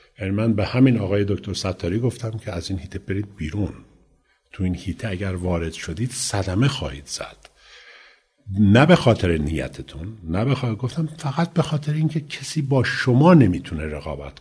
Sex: male